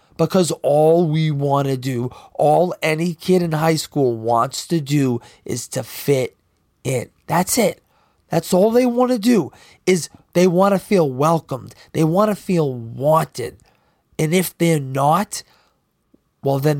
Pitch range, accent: 140-185 Hz, American